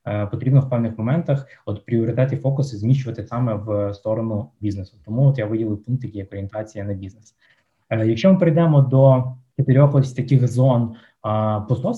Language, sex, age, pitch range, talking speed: Ukrainian, male, 20-39, 115-135 Hz, 150 wpm